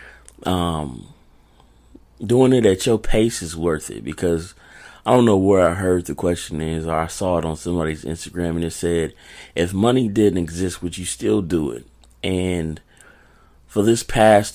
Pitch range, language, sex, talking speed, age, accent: 80-95 Hz, English, male, 175 wpm, 30-49, American